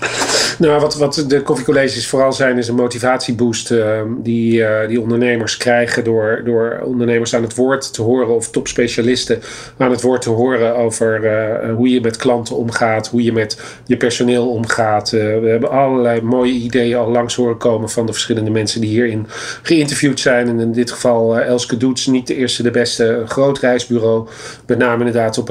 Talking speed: 190 wpm